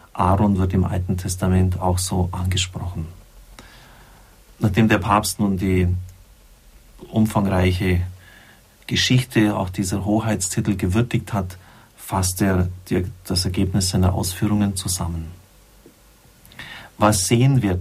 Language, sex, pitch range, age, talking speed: German, male, 95-110 Hz, 40-59, 100 wpm